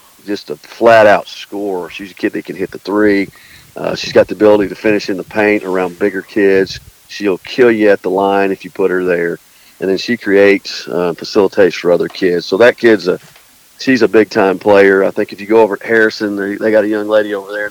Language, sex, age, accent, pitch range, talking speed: English, male, 50-69, American, 100-115 Hz, 240 wpm